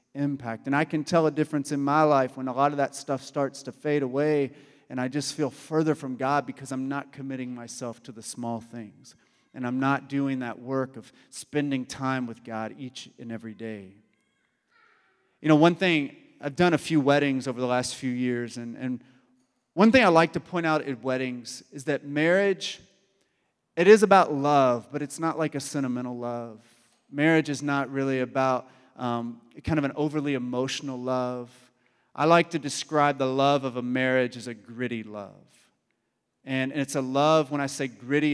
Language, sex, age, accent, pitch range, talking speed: English, male, 30-49, American, 125-145 Hz, 195 wpm